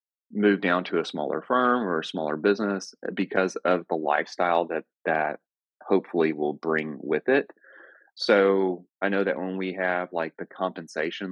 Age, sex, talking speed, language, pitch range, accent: 30-49, male, 165 wpm, English, 85-100 Hz, American